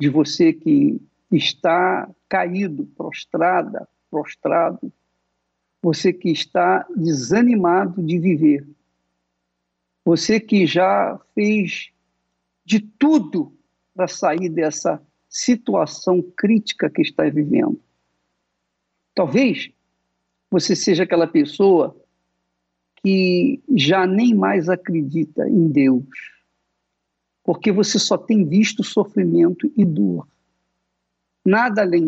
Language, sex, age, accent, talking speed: Portuguese, male, 60-79, Brazilian, 90 wpm